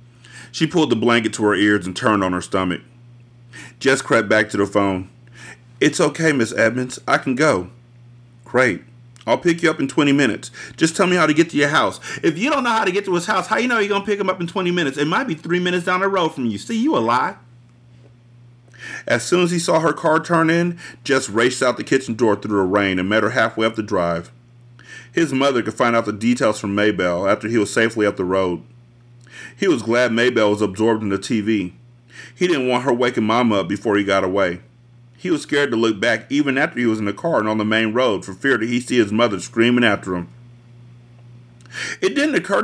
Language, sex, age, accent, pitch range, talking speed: English, male, 40-59, American, 110-135 Hz, 240 wpm